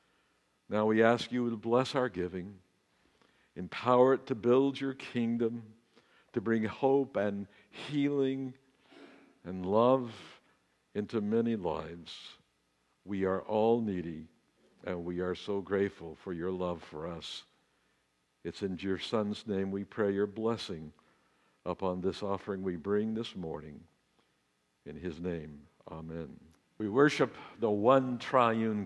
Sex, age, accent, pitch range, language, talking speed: male, 60-79, American, 90-125 Hz, English, 130 wpm